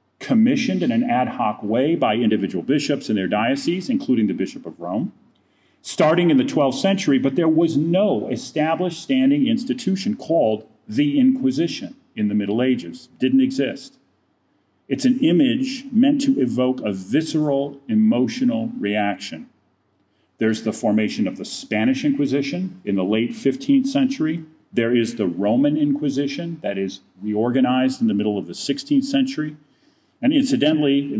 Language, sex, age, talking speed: English, male, 40-59, 150 wpm